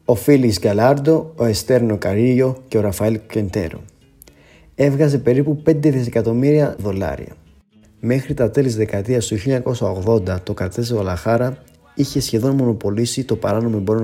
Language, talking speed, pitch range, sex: Greek, 130 wpm, 105-135 Hz, male